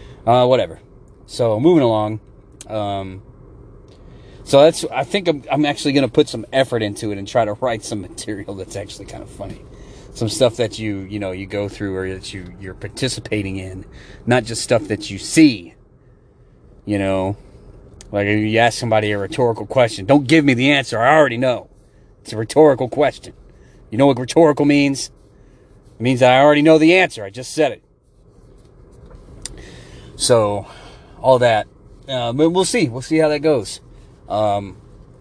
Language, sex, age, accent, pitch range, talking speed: English, male, 30-49, American, 100-130 Hz, 170 wpm